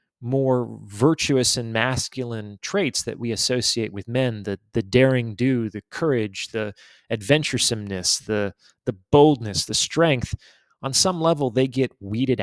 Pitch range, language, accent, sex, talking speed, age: 110-135 Hz, English, American, male, 140 wpm, 30-49